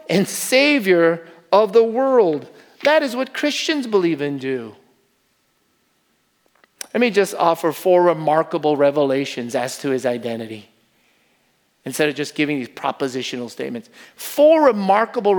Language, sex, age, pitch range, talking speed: English, male, 40-59, 150-215 Hz, 125 wpm